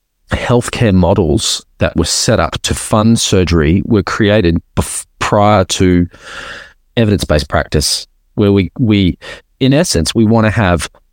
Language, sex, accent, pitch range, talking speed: English, male, Australian, 80-110 Hz, 130 wpm